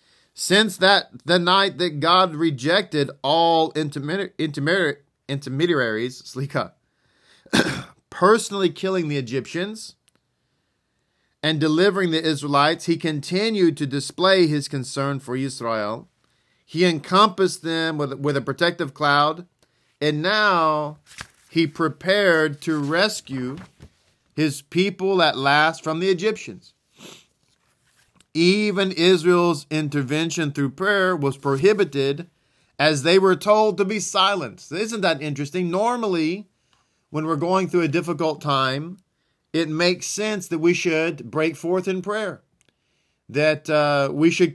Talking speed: 120 wpm